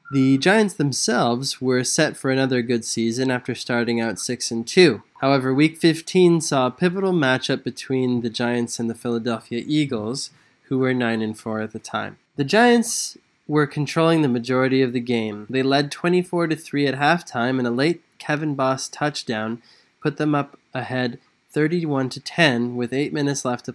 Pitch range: 120-155 Hz